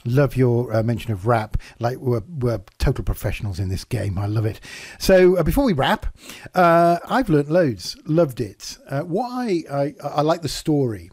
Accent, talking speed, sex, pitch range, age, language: British, 195 wpm, male, 110-140 Hz, 50-69, English